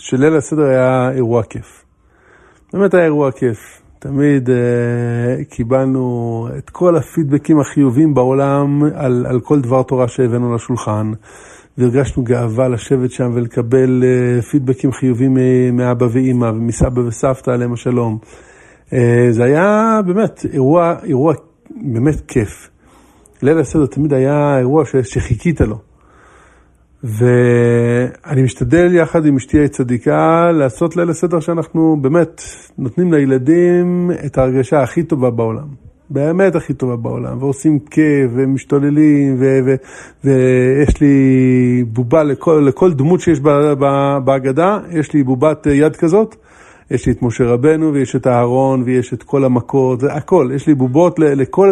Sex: male